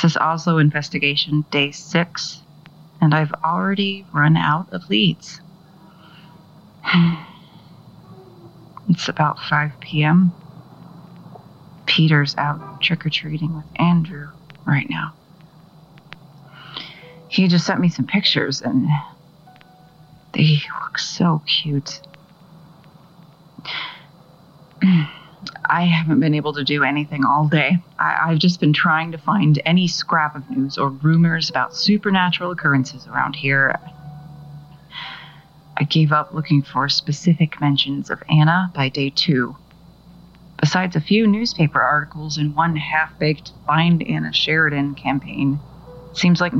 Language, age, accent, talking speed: English, 30-49, American, 115 wpm